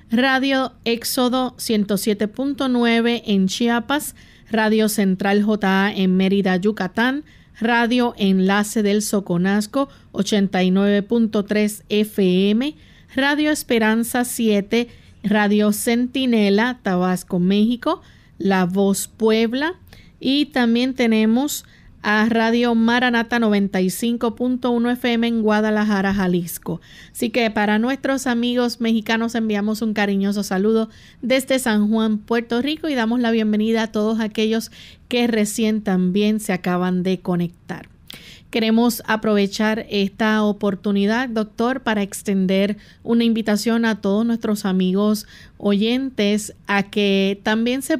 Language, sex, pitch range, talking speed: Spanish, female, 205-235 Hz, 105 wpm